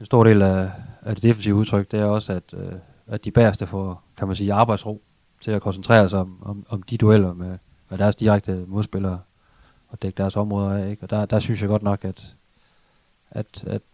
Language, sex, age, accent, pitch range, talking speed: Danish, male, 30-49, native, 95-105 Hz, 220 wpm